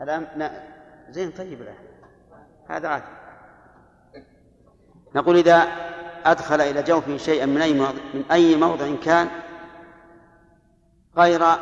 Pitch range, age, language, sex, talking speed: 140-165 Hz, 50-69, Arabic, male, 90 wpm